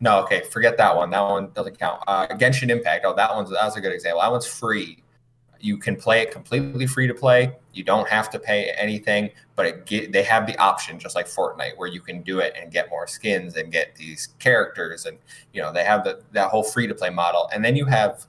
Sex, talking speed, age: male, 245 wpm, 20-39